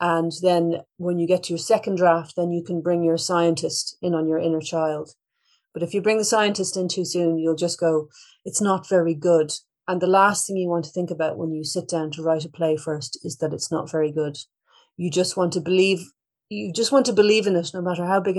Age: 30-49